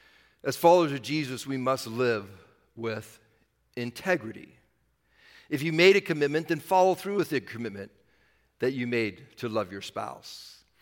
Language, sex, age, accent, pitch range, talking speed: English, male, 50-69, American, 125-160 Hz, 150 wpm